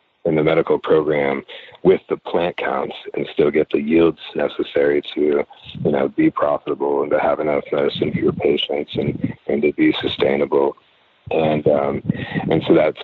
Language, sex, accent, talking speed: English, male, American, 170 wpm